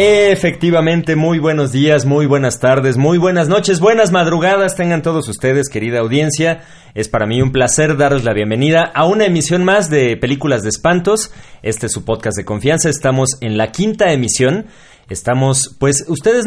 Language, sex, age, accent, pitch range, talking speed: Spanish, male, 30-49, Mexican, 110-155 Hz, 170 wpm